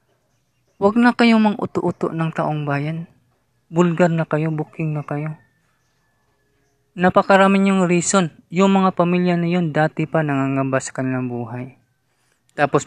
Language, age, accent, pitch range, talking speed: English, 20-39, Filipino, 130-175 Hz, 135 wpm